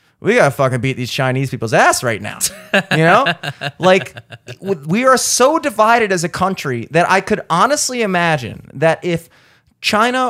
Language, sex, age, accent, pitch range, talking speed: English, male, 30-49, American, 125-170 Hz, 170 wpm